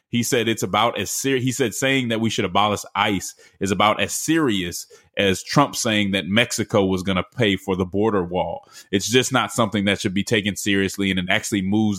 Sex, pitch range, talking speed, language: male, 100-125 Hz, 220 wpm, English